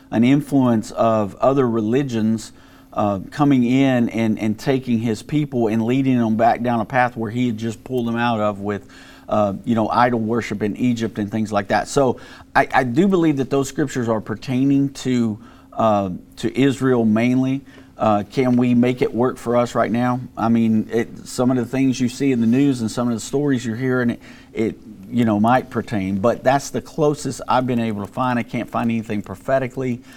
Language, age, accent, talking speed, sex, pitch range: English, 50-69, American, 205 wpm, male, 110-130 Hz